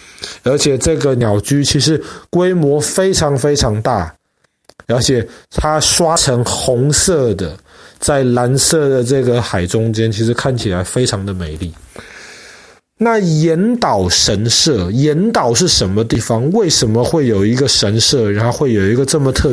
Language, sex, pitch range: Chinese, male, 110-165 Hz